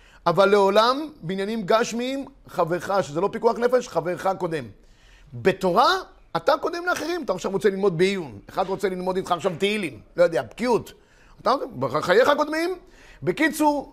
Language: Hebrew